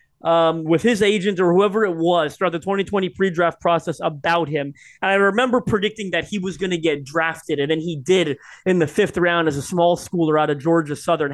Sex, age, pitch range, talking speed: male, 30-49, 160-200 Hz, 220 wpm